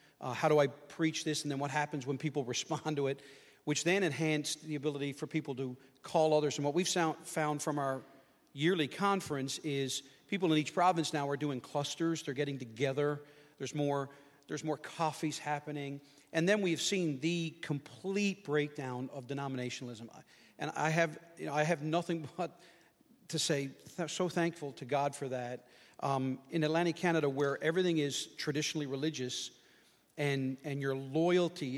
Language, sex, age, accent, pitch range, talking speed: English, male, 40-59, American, 140-165 Hz, 170 wpm